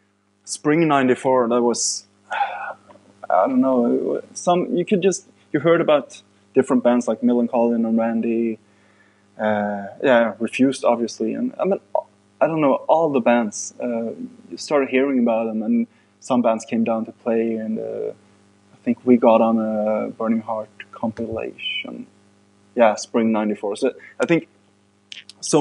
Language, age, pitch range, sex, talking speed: English, 20-39, 110-125 Hz, male, 150 wpm